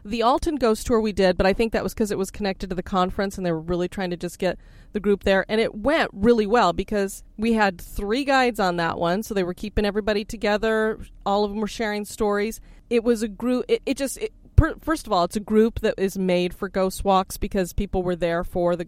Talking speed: 250 wpm